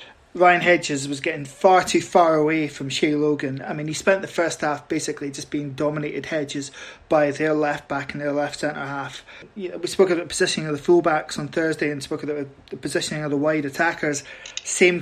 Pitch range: 150-195 Hz